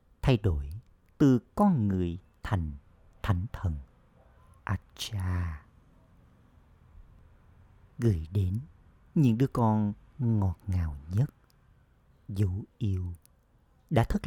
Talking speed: 90 wpm